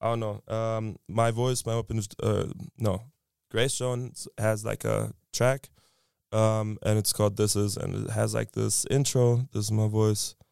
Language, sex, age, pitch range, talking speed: English, male, 20-39, 105-120 Hz, 190 wpm